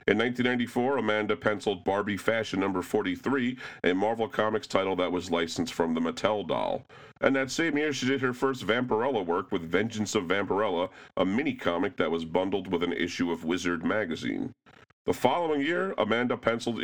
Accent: American